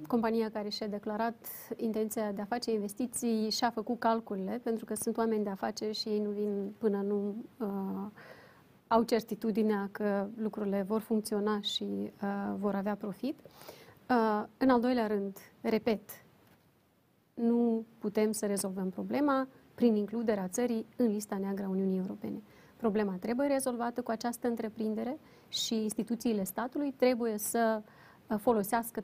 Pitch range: 210-235 Hz